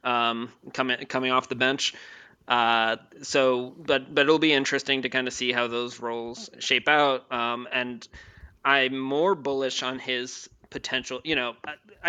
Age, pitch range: 20-39, 120-135 Hz